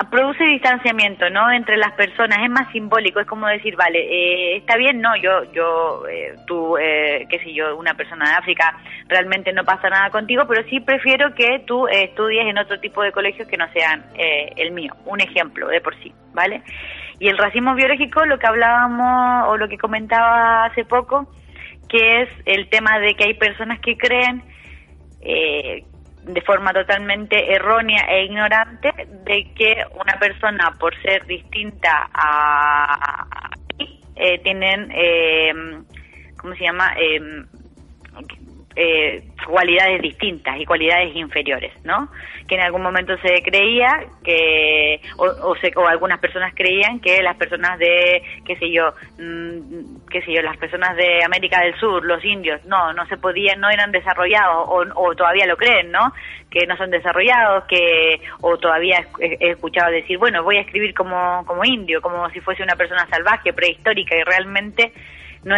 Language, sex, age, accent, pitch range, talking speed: Spanish, female, 20-39, Argentinian, 175-220 Hz, 165 wpm